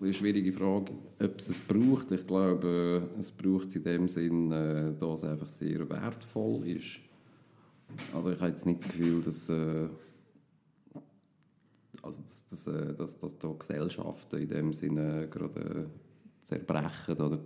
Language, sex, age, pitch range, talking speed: German, male, 40-59, 80-90 Hz, 150 wpm